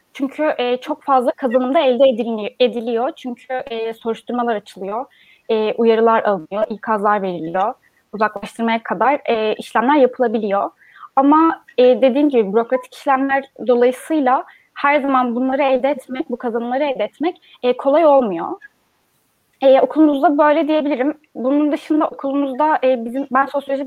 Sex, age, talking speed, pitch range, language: female, 10-29, 110 wpm, 230-275 Hz, Turkish